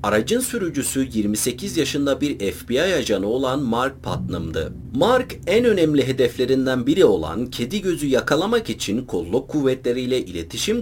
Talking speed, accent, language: 130 wpm, native, Turkish